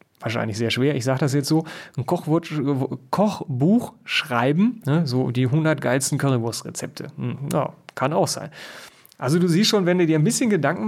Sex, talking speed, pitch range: male, 170 wpm, 135-170 Hz